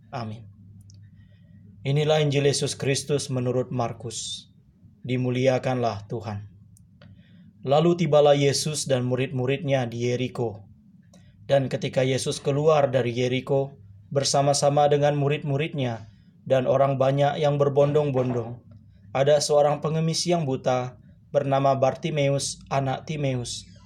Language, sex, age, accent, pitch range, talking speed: Indonesian, male, 20-39, native, 120-145 Hz, 95 wpm